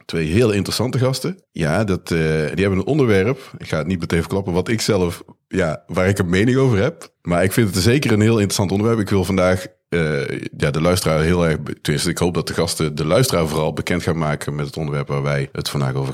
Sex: male